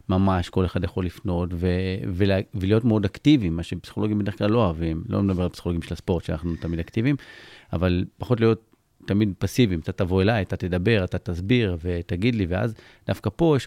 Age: 30-49